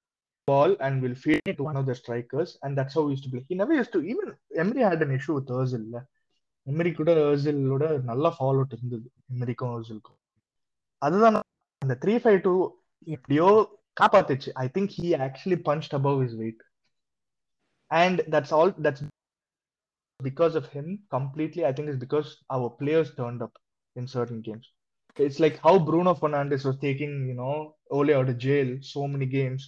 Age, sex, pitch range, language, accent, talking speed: 20-39, male, 130-160 Hz, Tamil, native, 180 wpm